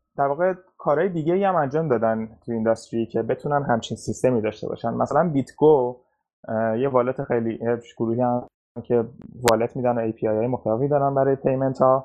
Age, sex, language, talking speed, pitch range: 20-39, male, Persian, 160 wpm, 120-155 Hz